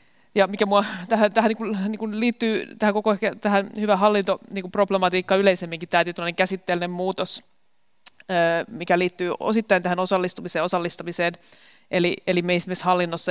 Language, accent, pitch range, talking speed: Finnish, native, 185-210 Hz, 160 wpm